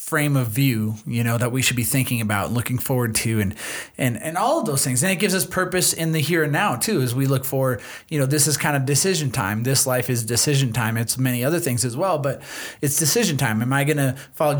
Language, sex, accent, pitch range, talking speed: English, male, American, 125-160 Hz, 265 wpm